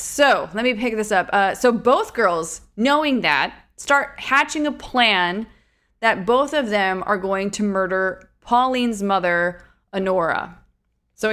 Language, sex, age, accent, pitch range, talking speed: English, female, 20-39, American, 190-245 Hz, 150 wpm